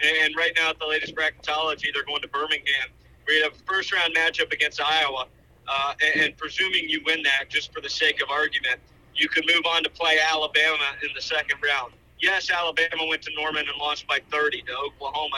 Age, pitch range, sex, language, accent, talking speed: 40-59, 150-195 Hz, male, English, American, 210 wpm